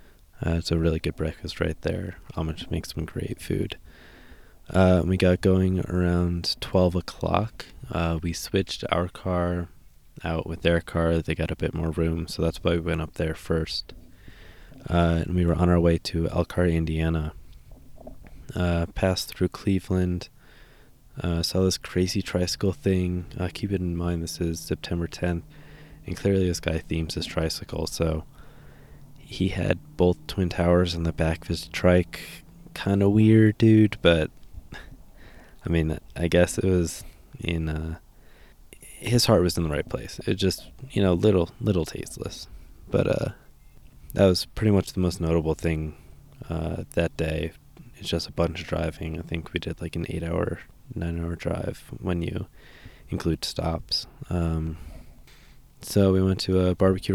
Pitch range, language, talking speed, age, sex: 80-95 Hz, English, 170 wpm, 20-39, male